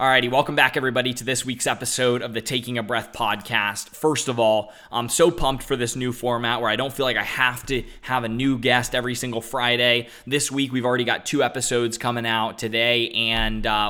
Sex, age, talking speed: male, 20-39, 220 wpm